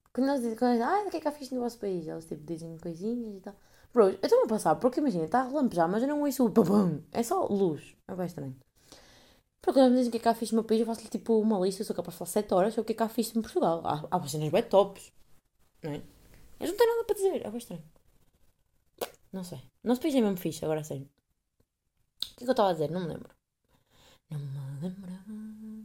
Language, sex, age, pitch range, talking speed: Portuguese, female, 20-39, 165-230 Hz, 265 wpm